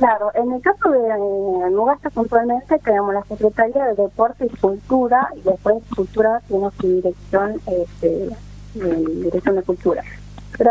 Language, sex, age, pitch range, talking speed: Spanish, female, 30-49, 195-245 Hz, 140 wpm